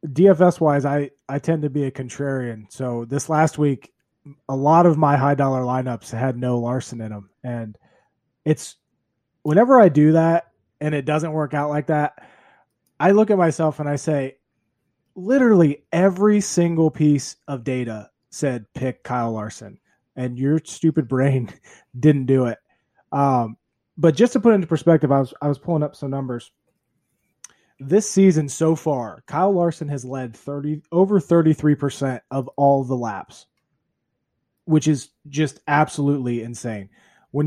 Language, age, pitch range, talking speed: English, 20-39, 130-165 Hz, 160 wpm